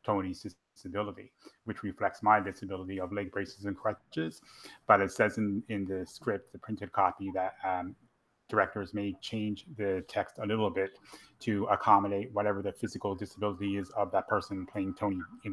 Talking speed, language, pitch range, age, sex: 170 wpm, English, 95-110 Hz, 30-49, male